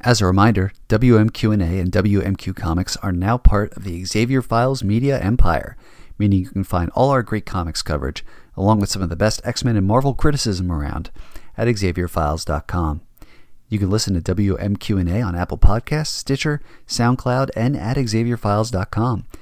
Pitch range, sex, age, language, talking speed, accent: 90-115 Hz, male, 40-59, English, 165 wpm, American